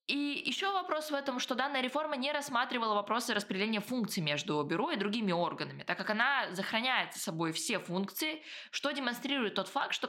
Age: 20-39